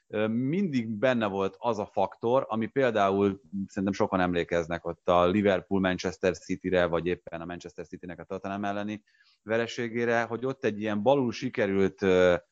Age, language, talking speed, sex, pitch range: 30-49, Hungarian, 145 wpm, male, 95-120 Hz